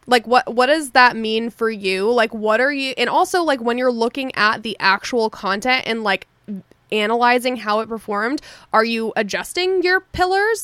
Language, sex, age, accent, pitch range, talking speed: English, female, 20-39, American, 210-270 Hz, 185 wpm